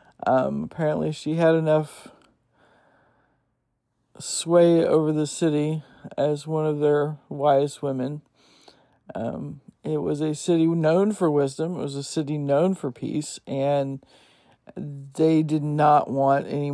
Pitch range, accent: 140-165 Hz, American